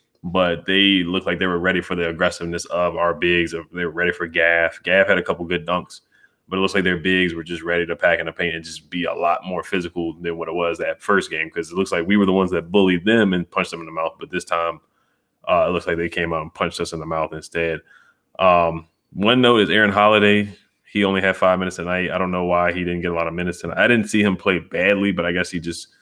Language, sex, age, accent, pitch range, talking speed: English, male, 20-39, American, 85-95 Hz, 280 wpm